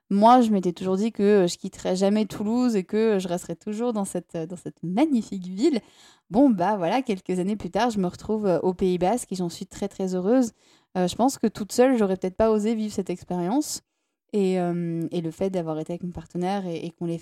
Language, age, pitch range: French, 20-39, 185-235 Hz